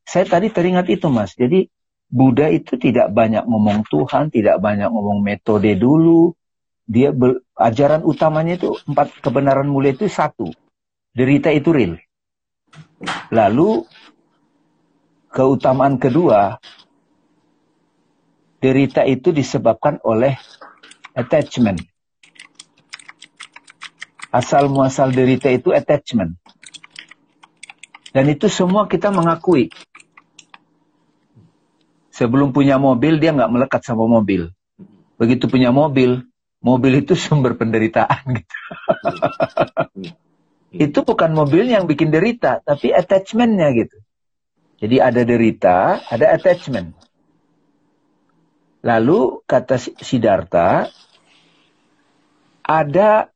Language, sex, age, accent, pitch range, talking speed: Indonesian, male, 50-69, native, 125-165 Hz, 90 wpm